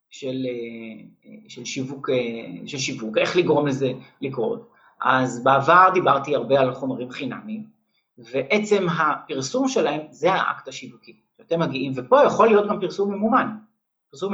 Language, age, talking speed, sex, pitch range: English, 30-49, 130 wpm, male, 145-210 Hz